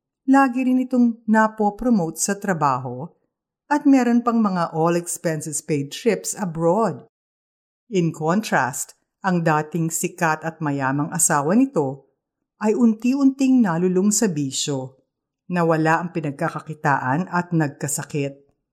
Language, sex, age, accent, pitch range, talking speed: Filipino, female, 50-69, native, 140-205 Hz, 105 wpm